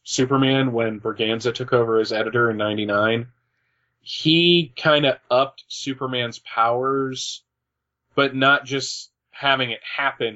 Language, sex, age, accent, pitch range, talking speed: English, male, 40-59, American, 110-130 Hz, 115 wpm